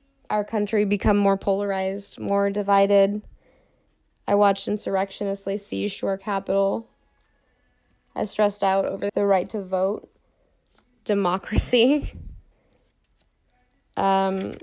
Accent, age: American, 20-39